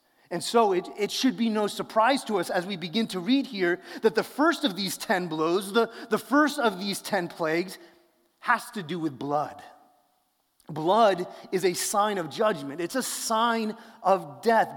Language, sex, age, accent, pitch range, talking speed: English, male, 30-49, American, 170-210 Hz, 185 wpm